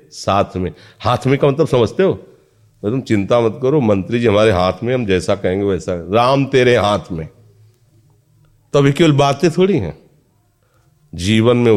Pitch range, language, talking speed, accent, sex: 90-120 Hz, Hindi, 175 wpm, native, male